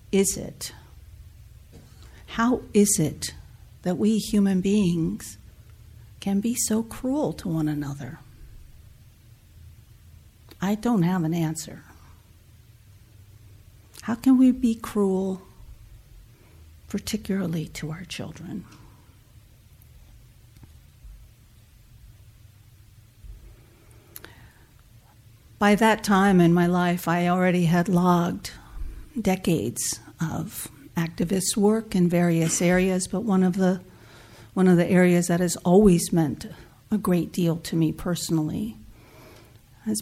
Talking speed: 100 wpm